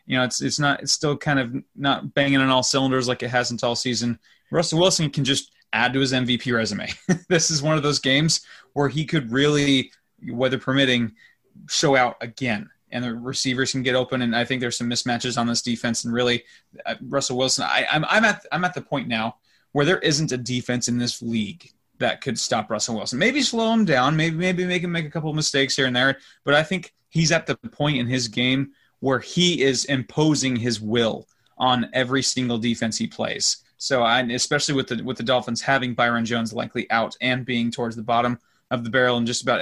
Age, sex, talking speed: 20-39, male, 225 wpm